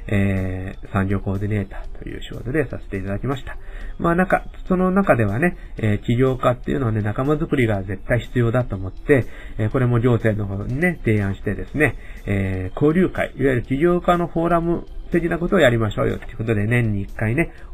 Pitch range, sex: 100-135 Hz, male